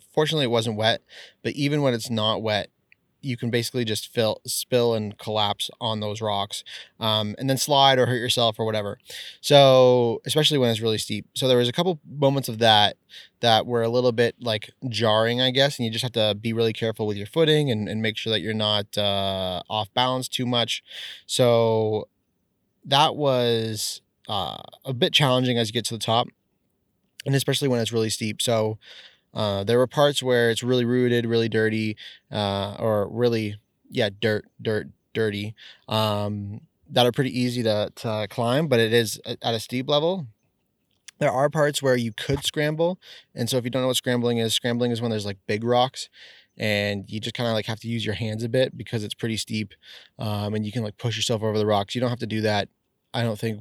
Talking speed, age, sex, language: 210 wpm, 20-39, male, English